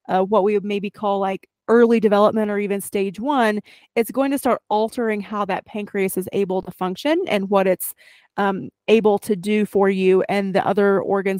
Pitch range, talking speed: 190-225 Hz, 200 wpm